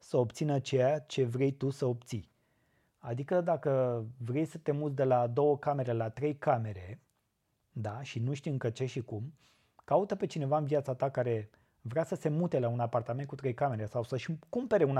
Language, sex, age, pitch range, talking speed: Romanian, male, 20-39, 120-150 Hz, 195 wpm